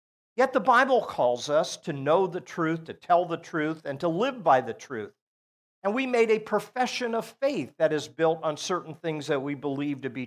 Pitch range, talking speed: 145-200 Hz, 215 wpm